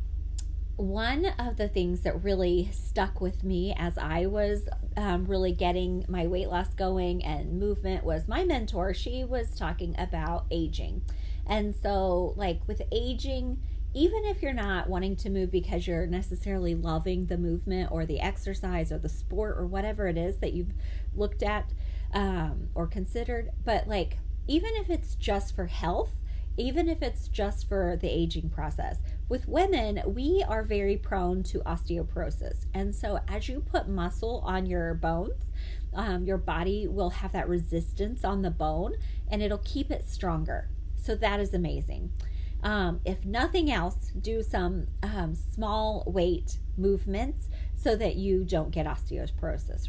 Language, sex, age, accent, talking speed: English, female, 30-49, American, 160 wpm